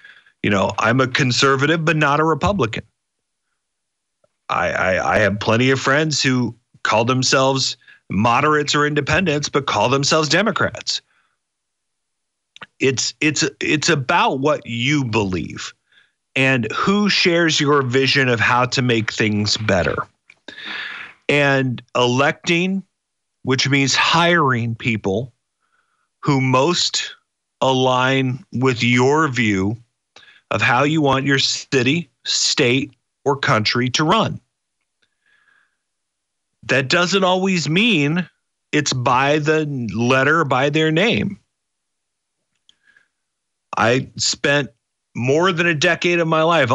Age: 50-69